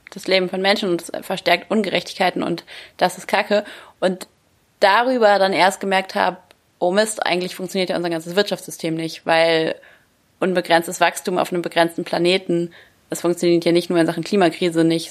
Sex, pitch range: female, 175-195 Hz